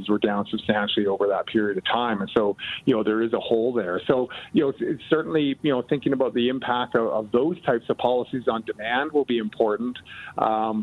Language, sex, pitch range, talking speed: English, male, 105-120 Hz, 225 wpm